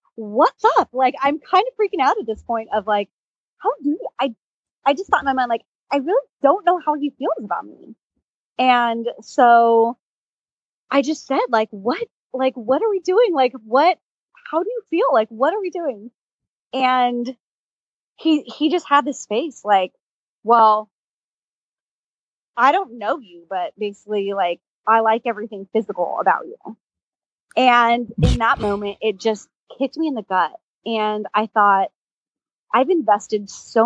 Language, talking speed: English, 170 wpm